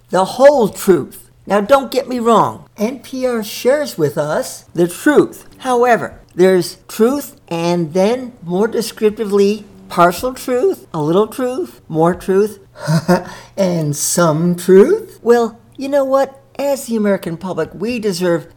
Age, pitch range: 60-79, 170-235 Hz